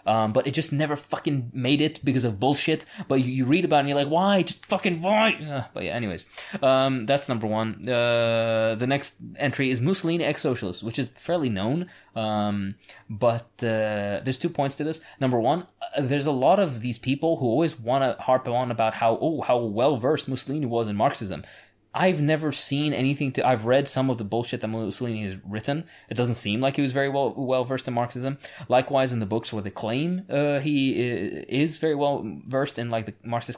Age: 20-39